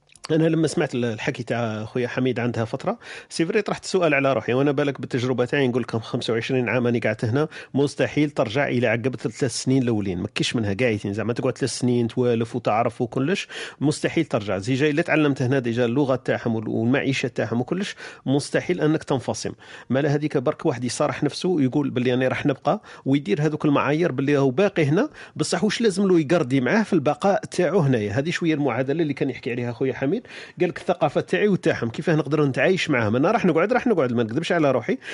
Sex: male